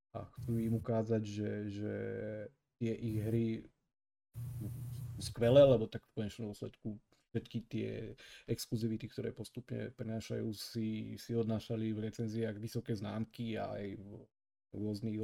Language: Slovak